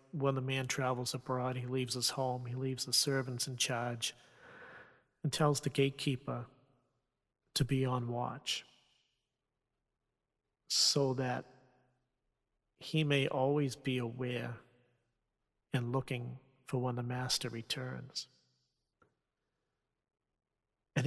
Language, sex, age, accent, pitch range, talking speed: English, male, 40-59, American, 125-140 Hz, 110 wpm